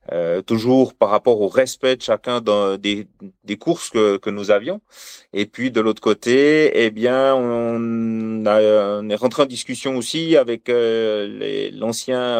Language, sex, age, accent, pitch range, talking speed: French, male, 30-49, French, 110-130 Hz, 165 wpm